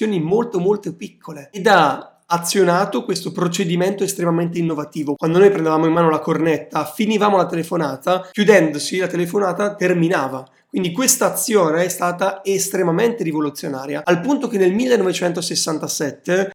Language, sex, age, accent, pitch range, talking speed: Italian, male, 30-49, native, 155-200 Hz, 130 wpm